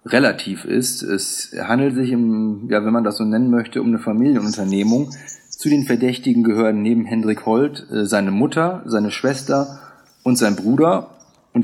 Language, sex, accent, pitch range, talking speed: German, male, German, 105-135 Hz, 150 wpm